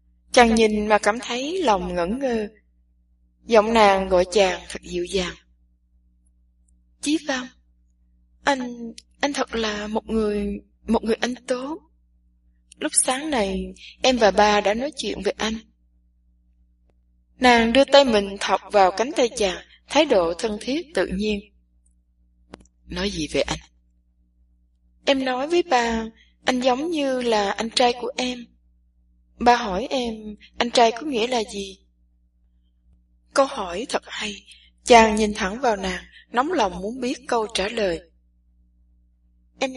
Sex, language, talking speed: female, English, 145 wpm